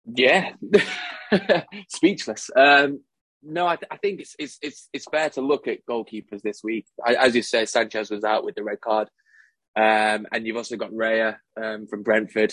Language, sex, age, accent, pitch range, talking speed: English, male, 20-39, British, 105-125 Hz, 185 wpm